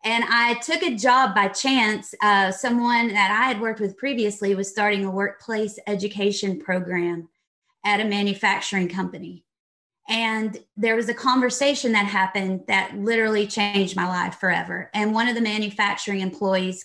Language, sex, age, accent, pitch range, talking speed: English, female, 30-49, American, 195-235 Hz, 155 wpm